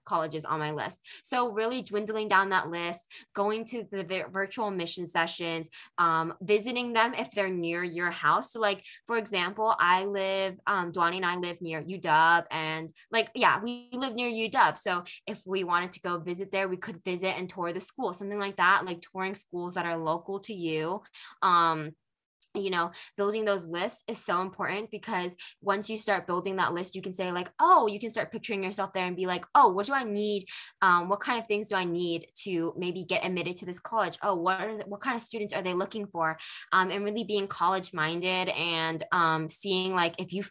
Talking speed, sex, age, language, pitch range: 215 wpm, female, 10-29, English, 175-210 Hz